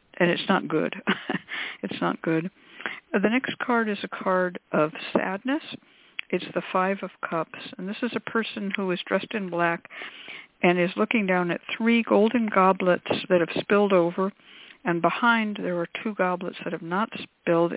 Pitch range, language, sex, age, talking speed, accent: 175-225 Hz, English, female, 60-79, 175 wpm, American